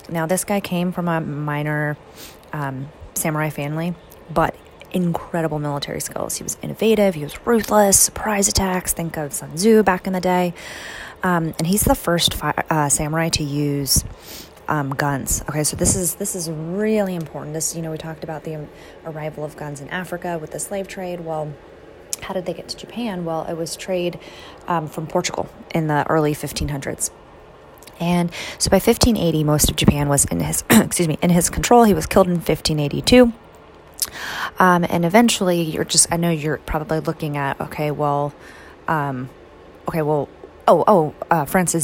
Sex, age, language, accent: female, 20-39, English, American